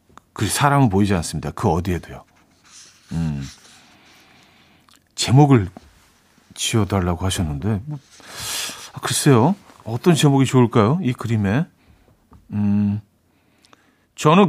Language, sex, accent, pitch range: Korean, male, native, 95-145 Hz